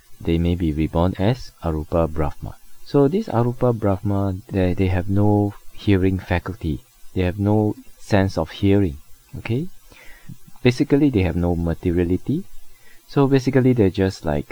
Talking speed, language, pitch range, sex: 140 wpm, English, 80-110 Hz, male